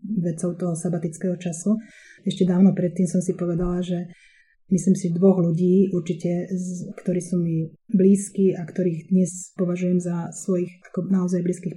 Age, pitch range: 20-39, 175-195 Hz